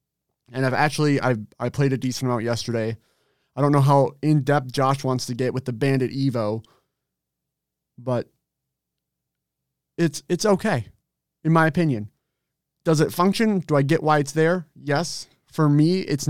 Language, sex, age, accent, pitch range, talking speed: English, male, 30-49, American, 125-155 Hz, 160 wpm